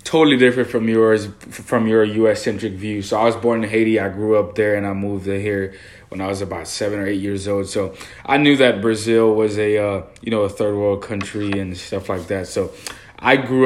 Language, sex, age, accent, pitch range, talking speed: English, male, 20-39, American, 100-115 Hz, 235 wpm